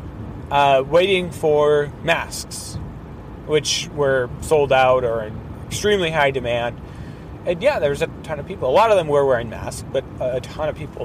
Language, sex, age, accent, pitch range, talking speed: English, male, 30-49, American, 125-165 Hz, 175 wpm